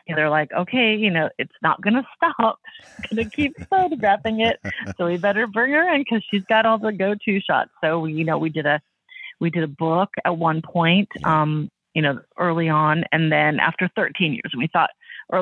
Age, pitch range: 30-49, 160-225 Hz